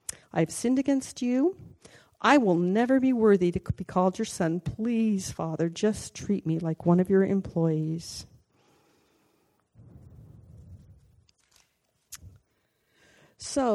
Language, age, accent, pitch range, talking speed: English, 50-69, American, 170-235 Hz, 110 wpm